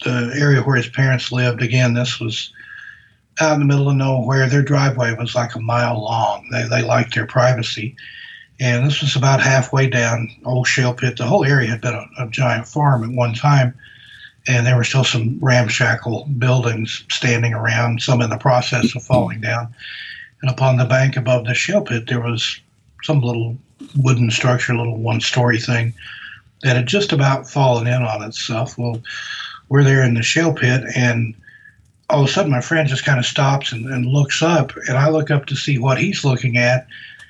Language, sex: English, male